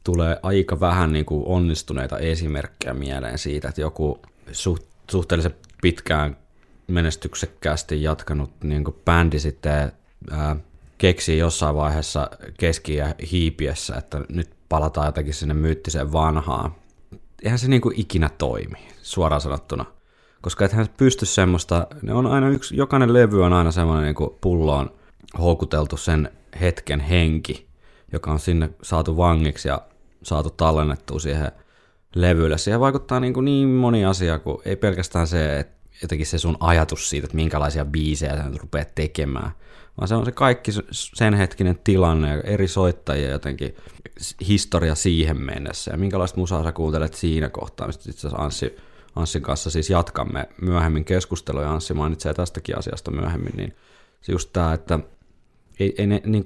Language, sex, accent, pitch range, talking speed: Finnish, male, native, 75-95 Hz, 140 wpm